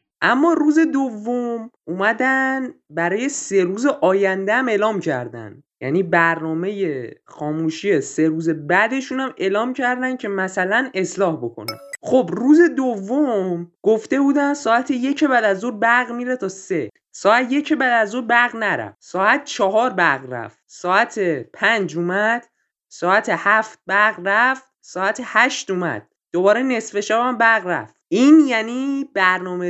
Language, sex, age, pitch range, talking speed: Persian, male, 20-39, 190-265 Hz, 130 wpm